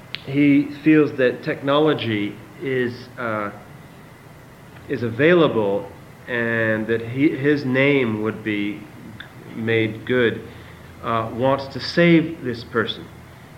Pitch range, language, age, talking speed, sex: 110-140 Hz, English, 40-59, 100 wpm, male